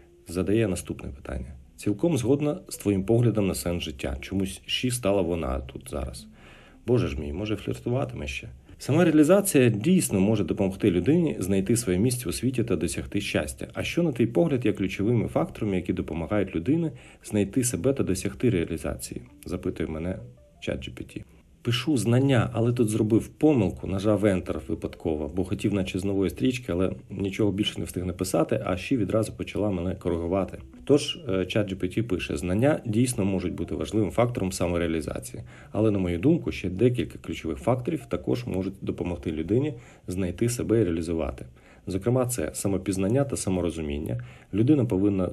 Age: 50-69